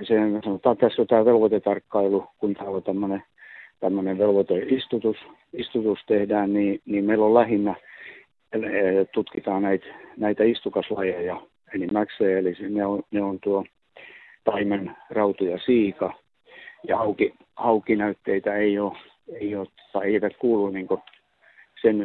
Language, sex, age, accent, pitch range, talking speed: Czech, male, 50-69, Finnish, 95-115 Hz, 110 wpm